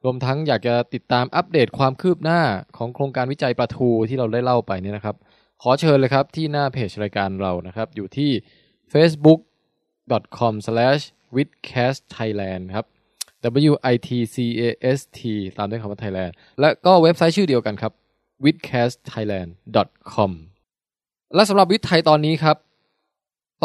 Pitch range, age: 115-145 Hz, 20-39